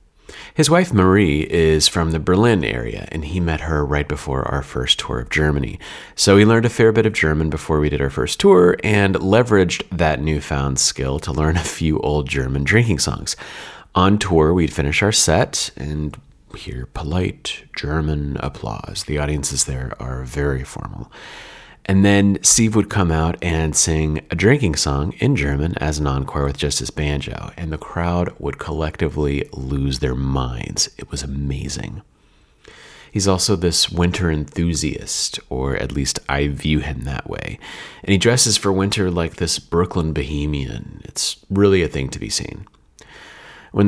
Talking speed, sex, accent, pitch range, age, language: 170 wpm, male, American, 70-95 Hz, 30-49, English